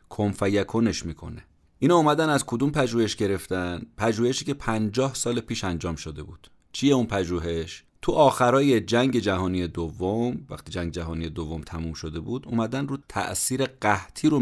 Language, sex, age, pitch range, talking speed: Persian, male, 30-49, 85-120 Hz, 155 wpm